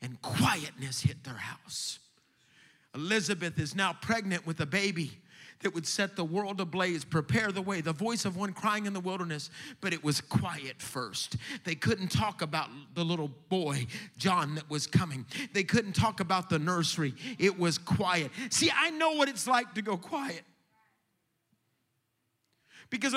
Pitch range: 140-205 Hz